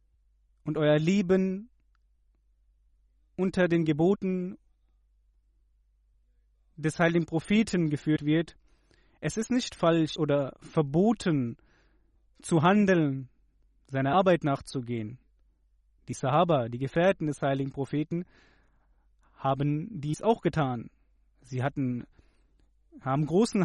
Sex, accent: male, German